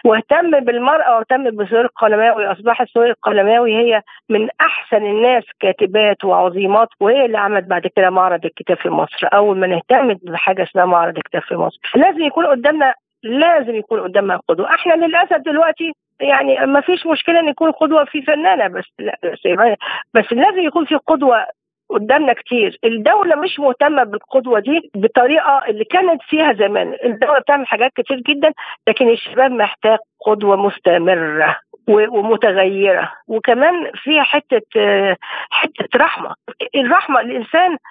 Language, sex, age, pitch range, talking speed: Arabic, female, 50-69, 210-295 Hz, 140 wpm